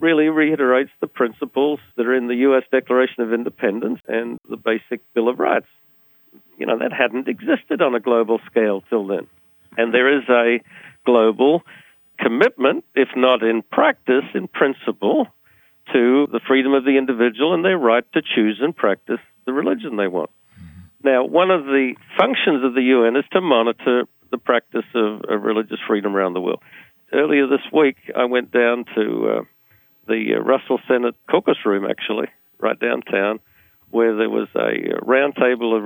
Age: 50-69